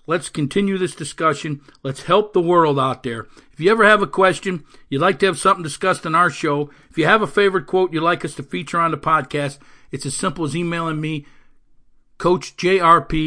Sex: male